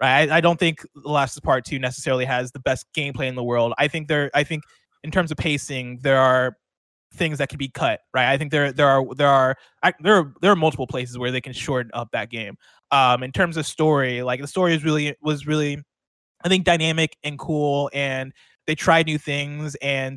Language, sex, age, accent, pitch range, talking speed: English, male, 20-39, American, 125-155 Hz, 225 wpm